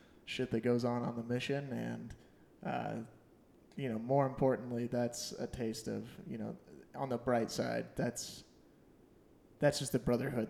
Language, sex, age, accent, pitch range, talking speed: English, male, 20-39, American, 120-135 Hz, 160 wpm